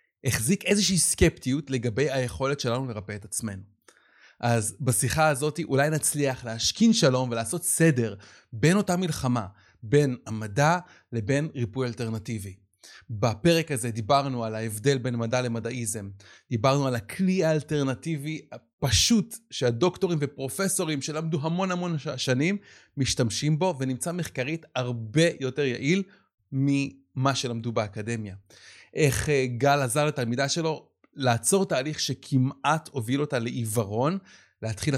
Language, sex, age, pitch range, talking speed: Hebrew, male, 30-49, 120-155 Hz, 115 wpm